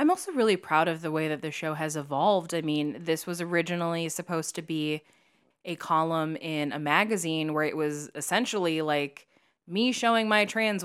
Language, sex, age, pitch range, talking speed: English, female, 20-39, 160-210 Hz, 190 wpm